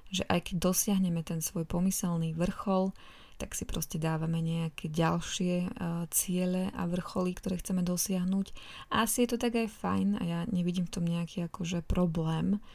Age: 20-39